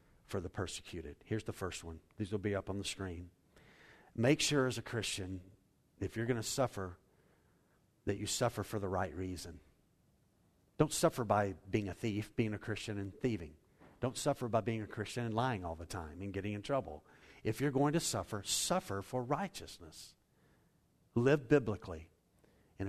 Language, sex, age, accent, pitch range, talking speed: English, male, 50-69, American, 95-135 Hz, 180 wpm